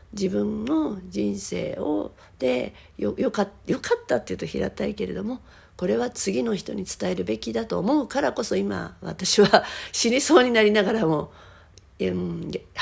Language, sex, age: Japanese, female, 50-69